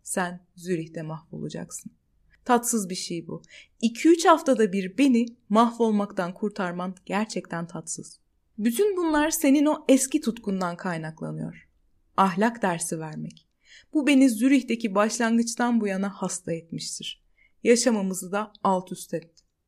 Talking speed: 115 wpm